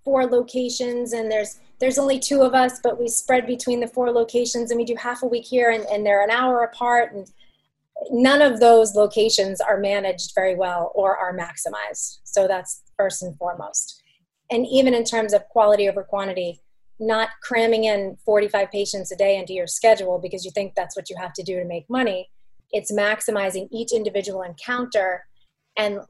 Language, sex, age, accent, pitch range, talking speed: English, female, 30-49, American, 195-235 Hz, 190 wpm